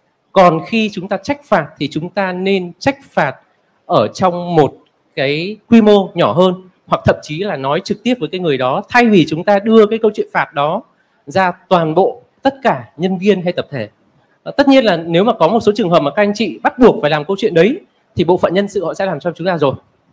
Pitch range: 155-200 Hz